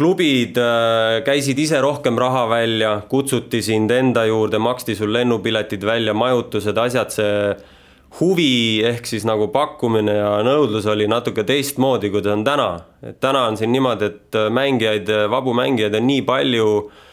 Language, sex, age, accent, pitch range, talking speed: English, male, 20-39, Finnish, 105-130 Hz, 145 wpm